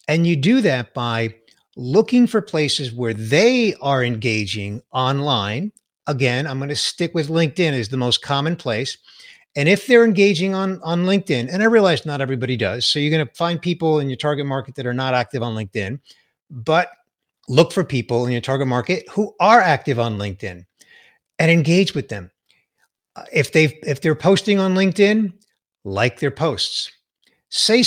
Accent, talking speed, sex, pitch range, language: American, 175 wpm, male, 120-180 Hz, English